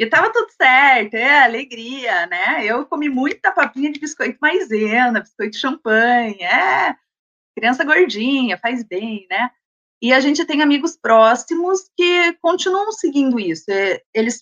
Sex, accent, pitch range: female, Brazilian, 225-305 Hz